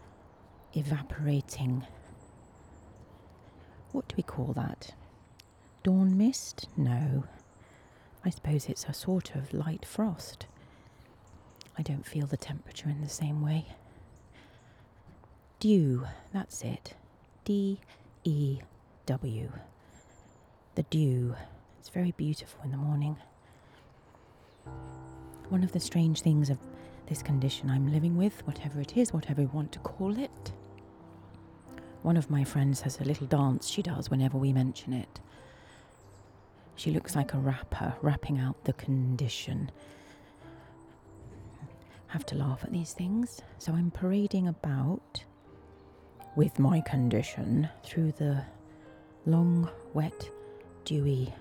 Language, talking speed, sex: English, 120 wpm, female